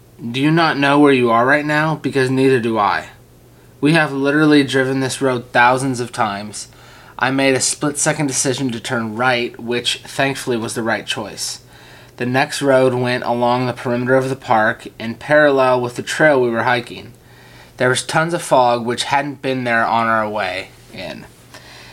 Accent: American